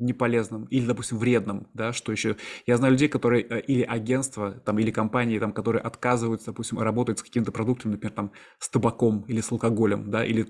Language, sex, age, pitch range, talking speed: Russian, male, 20-39, 115-135 Hz, 190 wpm